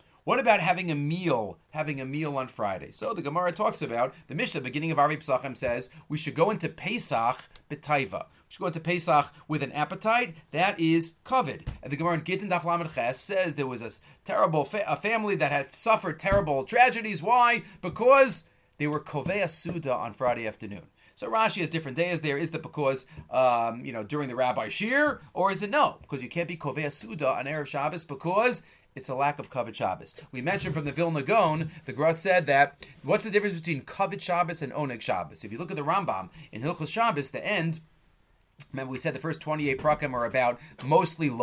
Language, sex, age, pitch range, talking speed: English, male, 30-49, 140-180 Hz, 205 wpm